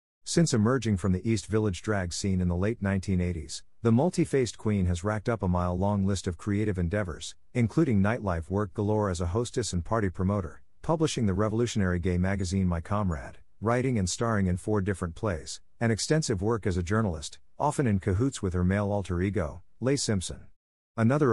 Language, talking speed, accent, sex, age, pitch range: English, 185 wpm, American, male, 50-69, 90-110 Hz